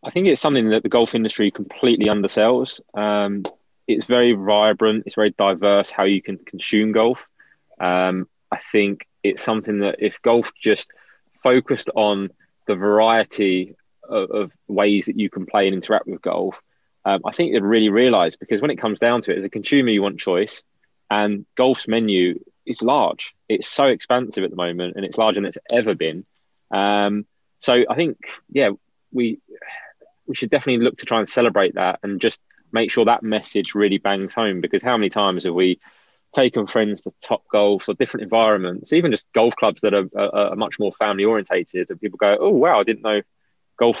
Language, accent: English, British